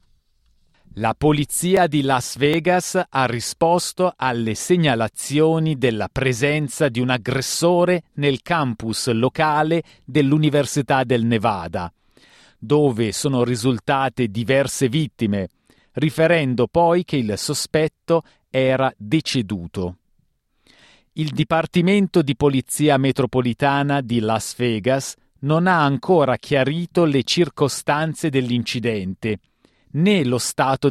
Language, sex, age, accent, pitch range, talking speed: Italian, male, 40-59, native, 115-155 Hz, 95 wpm